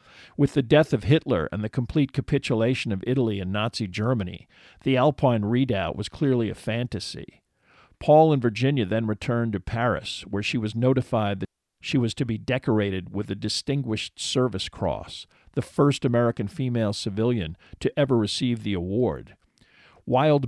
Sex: male